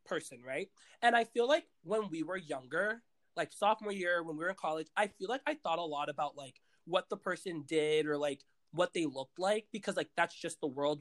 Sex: male